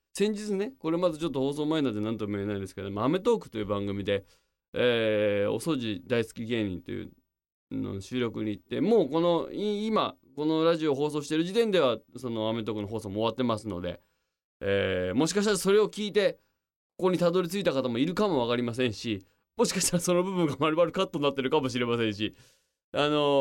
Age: 20-39